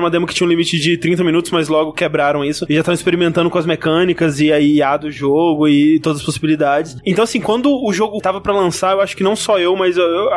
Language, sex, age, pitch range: Portuguese, male, 20-39, 160-190 Hz